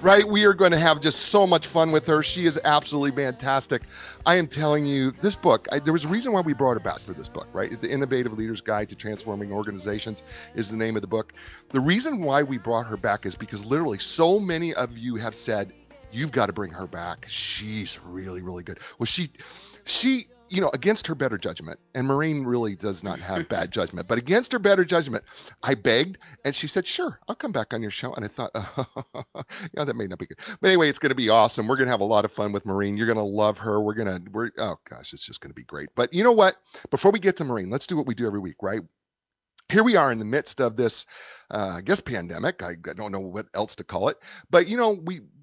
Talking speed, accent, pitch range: 260 wpm, American, 105-160 Hz